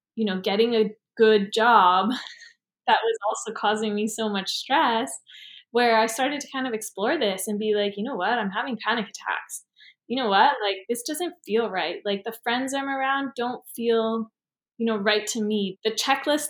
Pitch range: 210-255 Hz